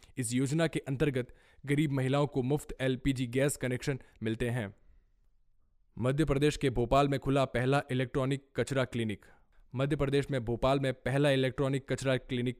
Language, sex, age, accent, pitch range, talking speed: Hindi, male, 20-39, native, 125-140 Hz, 125 wpm